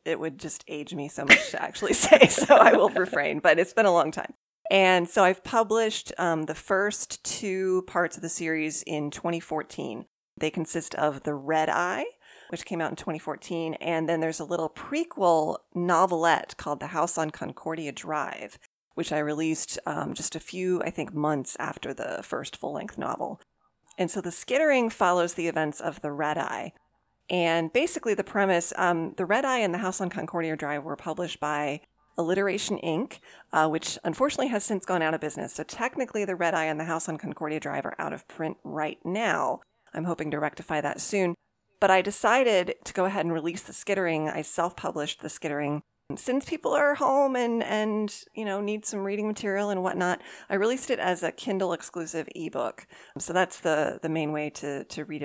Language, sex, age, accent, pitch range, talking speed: English, female, 30-49, American, 155-195 Hz, 195 wpm